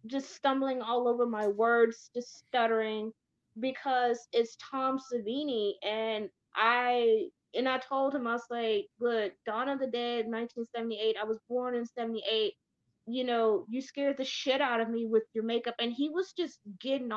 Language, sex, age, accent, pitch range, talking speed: English, female, 20-39, American, 225-290 Hz, 170 wpm